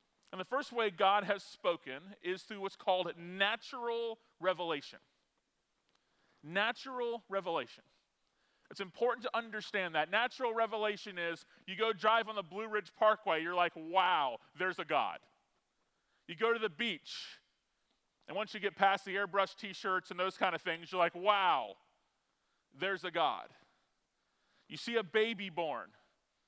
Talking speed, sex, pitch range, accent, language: 150 wpm, male, 180-230 Hz, American, English